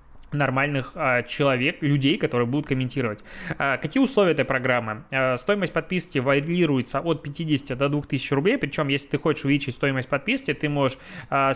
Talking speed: 150 wpm